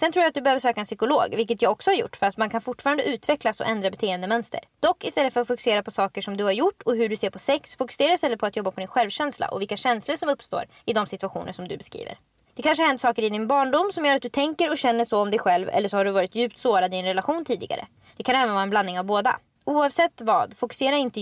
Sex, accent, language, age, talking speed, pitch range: female, Swedish, English, 20-39, 285 wpm, 210-295 Hz